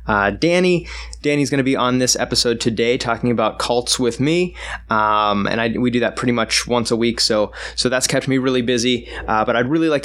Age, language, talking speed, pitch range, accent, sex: 20-39, English, 225 wpm, 110-130 Hz, American, male